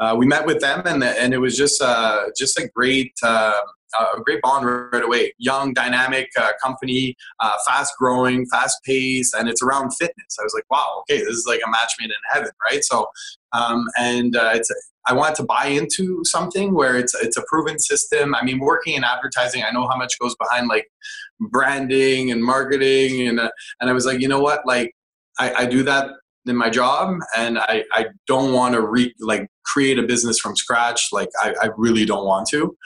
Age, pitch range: 20-39, 120-145 Hz